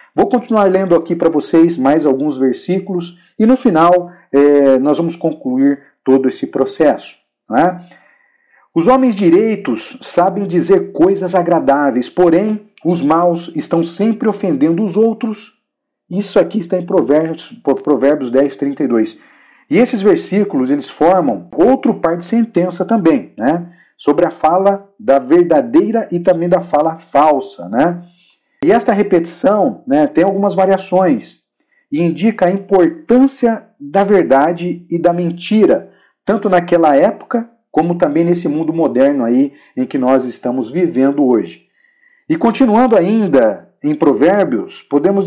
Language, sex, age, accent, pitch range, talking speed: Portuguese, male, 50-69, Brazilian, 160-215 Hz, 135 wpm